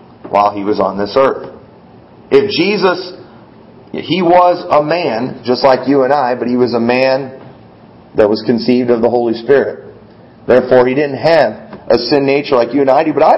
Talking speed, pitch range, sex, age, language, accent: 195 wpm, 125-155 Hz, male, 40-59, English, American